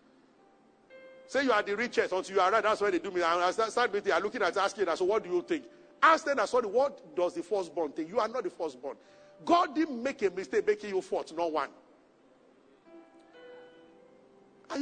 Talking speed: 215 wpm